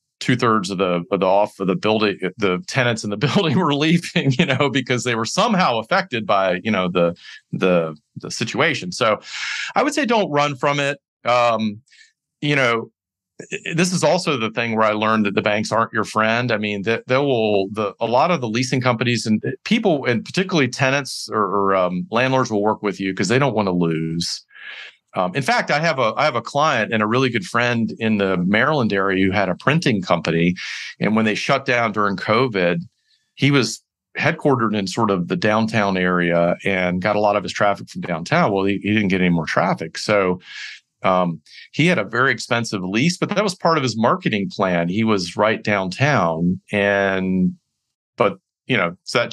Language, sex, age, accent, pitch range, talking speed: English, male, 40-59, American, 95-130 Hz, 210 wpm